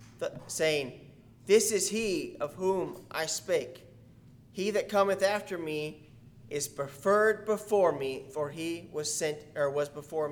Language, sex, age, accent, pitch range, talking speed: English, male, 30-49, American, 135-180 Hz, 145 wpm